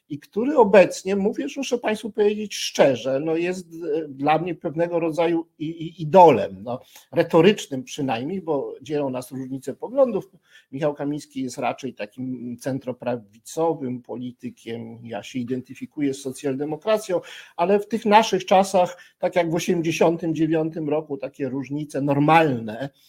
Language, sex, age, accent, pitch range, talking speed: Polish, male, 50-69, native, 130-170 Hz, 125 wpm